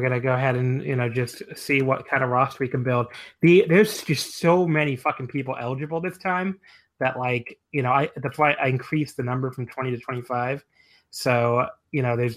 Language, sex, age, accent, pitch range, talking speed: English, male, 20-39, American, 120-140 Hz, 220 wpm